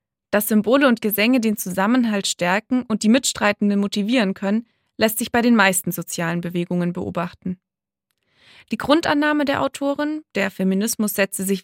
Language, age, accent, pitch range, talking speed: German, 20-39, German, 190-240 Hz, 145 wpm